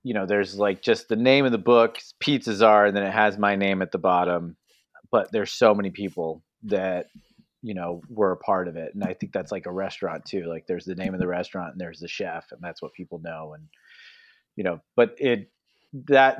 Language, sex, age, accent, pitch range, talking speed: English, male, 30-49, American, 95-120 Hz, 235 wpm